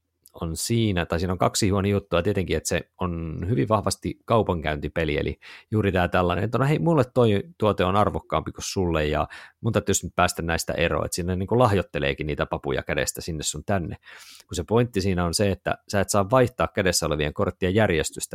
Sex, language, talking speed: male, Finnish, 195 wpm